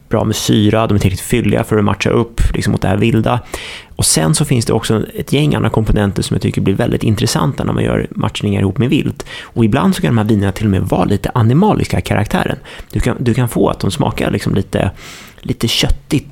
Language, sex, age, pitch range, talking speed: Swedish, male, 30-49, 100-125 Hz, 240 wpm